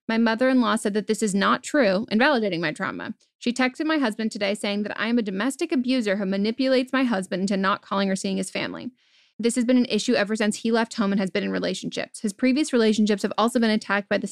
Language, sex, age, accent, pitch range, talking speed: English, female, 10-29, American, 205-245 Hz, 245 wpm